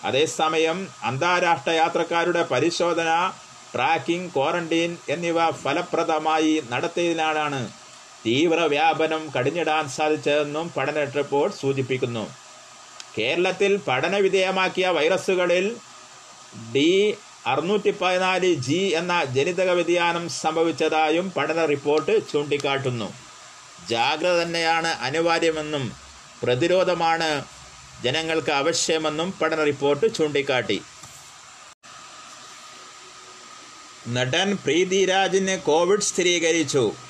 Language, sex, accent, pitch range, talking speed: Malayalam, male, native, 155-190 Hz, 70 wpm